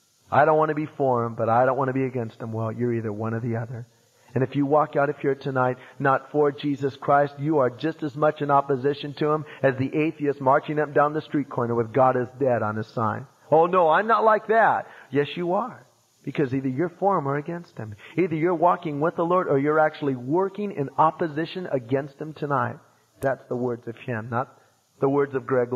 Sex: male